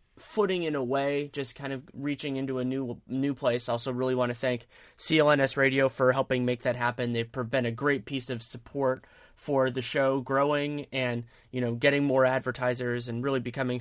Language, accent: English, American